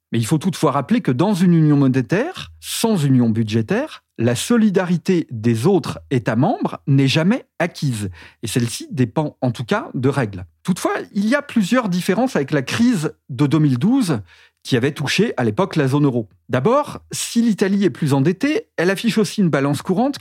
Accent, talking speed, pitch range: French, 180 wpm, 130-195 Hz